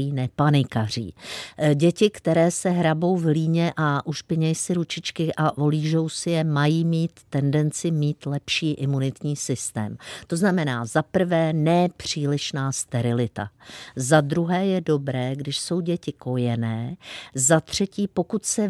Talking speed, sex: 130 wpm, female